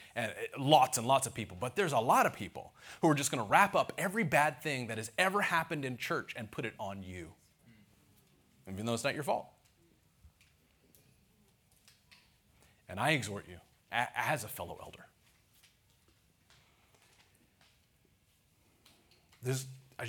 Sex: male